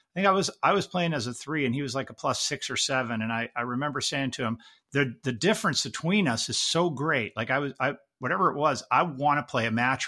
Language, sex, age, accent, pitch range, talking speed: English, male, 50-69, American, 120-155 Hz, 280 wpm